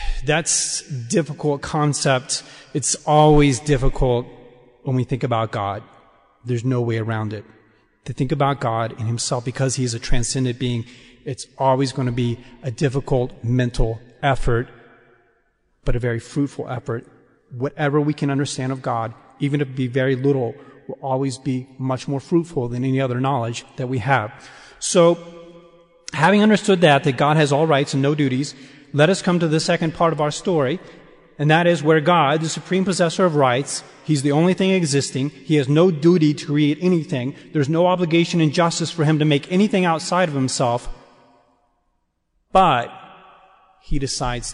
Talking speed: 170 wpm